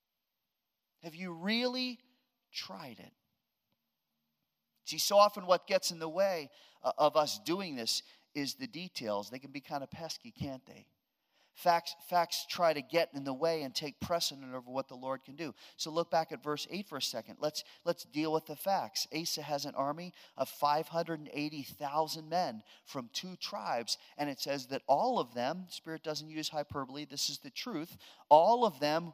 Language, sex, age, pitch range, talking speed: English, male, 40-59, 140-185 Hz, 180 wpm